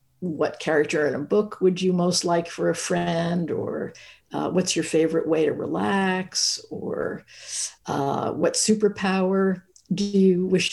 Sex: female